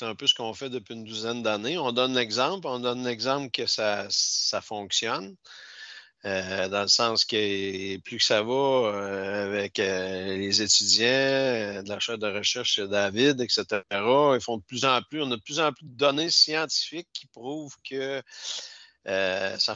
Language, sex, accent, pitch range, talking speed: French, male, Canadian, 105-135 Hz, 190 wpm